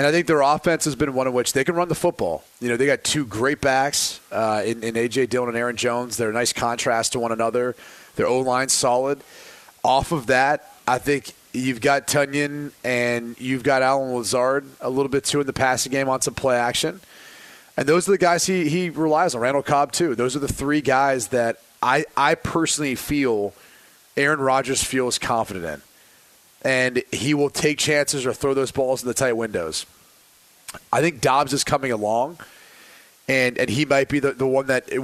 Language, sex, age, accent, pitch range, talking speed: English, male, 30-49, American, 125-145 Hz, 210 wpm